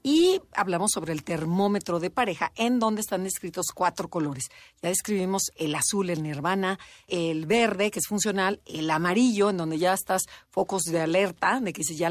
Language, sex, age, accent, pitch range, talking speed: Spanish, female, 40-59, Mexican, 175-235 Hz, 185 wpm